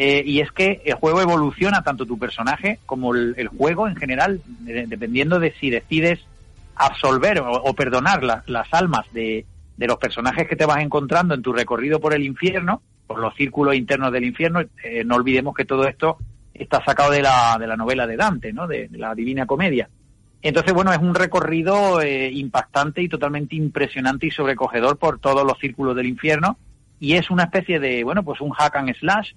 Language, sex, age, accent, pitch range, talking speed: Spanish, male, 40-59, Spanish, 125-160 Hz, 200 wpm